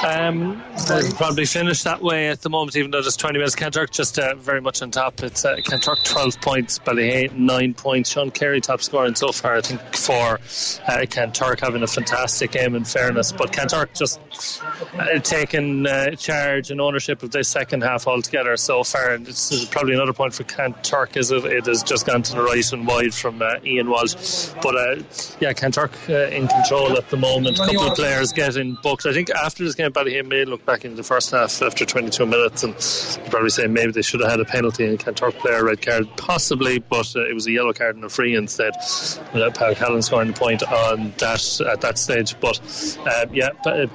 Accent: Irish